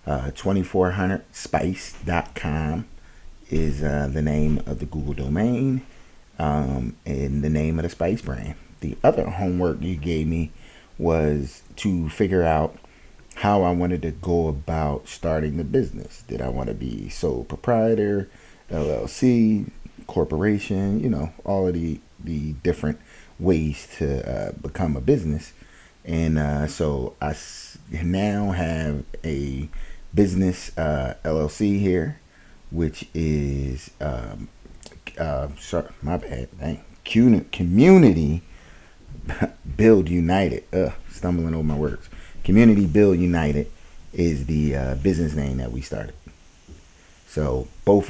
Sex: male